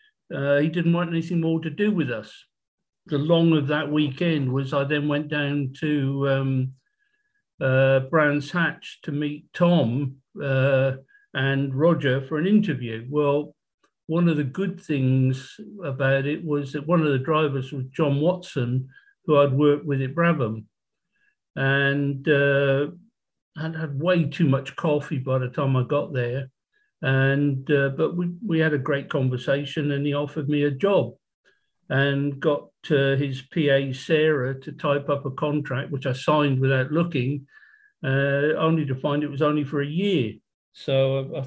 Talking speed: 165 wpm